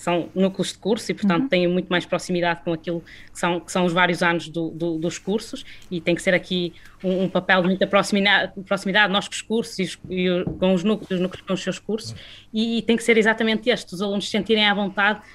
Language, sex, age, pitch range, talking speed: Portuguese, female, 20-39, 175-195 Hz, 225 wpm